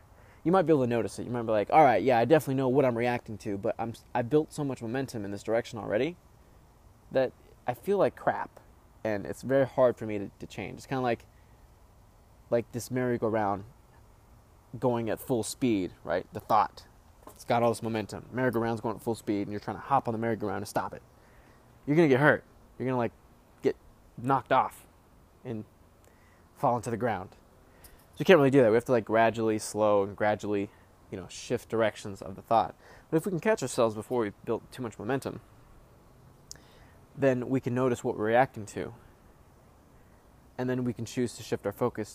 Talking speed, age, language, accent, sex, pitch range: 205 wpm, 20-39, English, American, male, 100-120 Hz